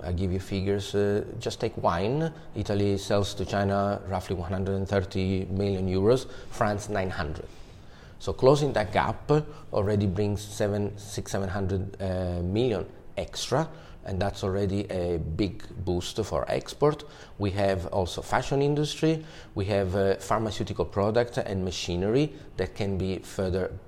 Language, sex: English, male